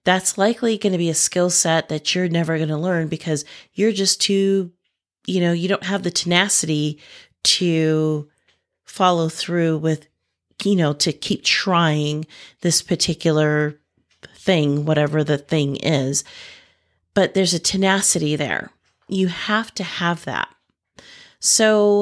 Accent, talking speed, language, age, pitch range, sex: American, 140 wpm, English, 30-49, 155-195 Hz, female